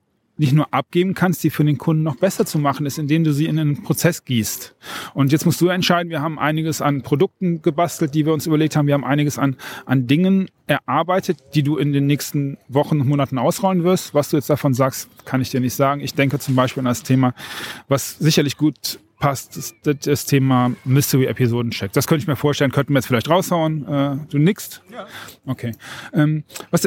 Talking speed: 210 wpm